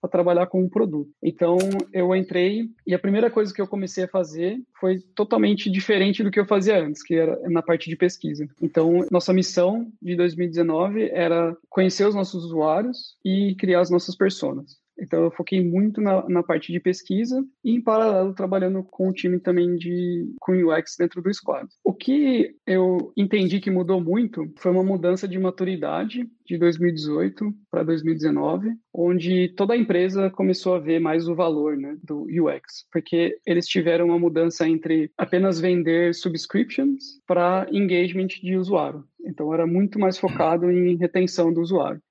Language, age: Portuguese, 20-39